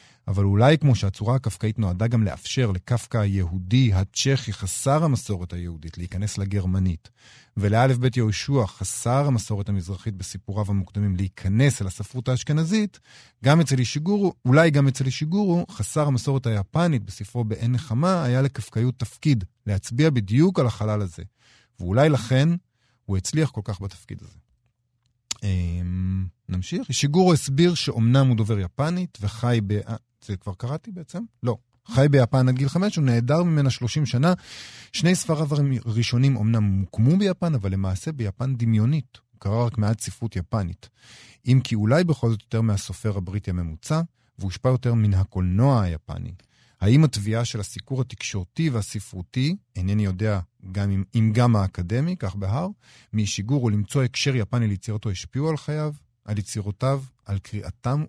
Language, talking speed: Hebrew, 145 wpm